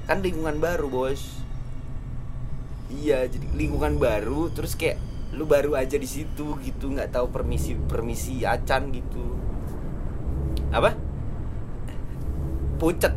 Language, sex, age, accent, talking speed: Indonesian, male, 20-39, native, 110 wpm